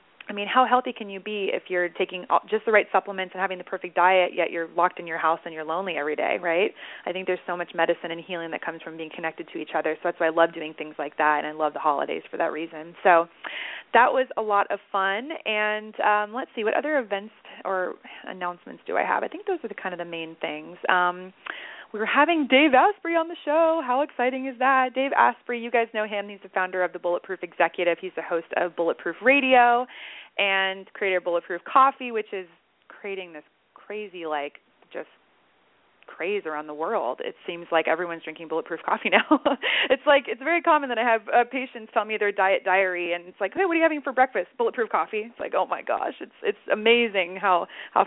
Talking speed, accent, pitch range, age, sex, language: 230 wpm, American, 175-245 Hz, 30-49, female, English